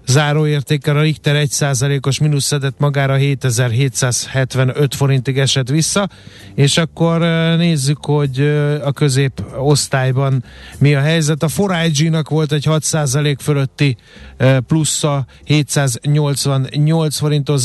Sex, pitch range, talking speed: male, 130-150 Hz, 105 wpm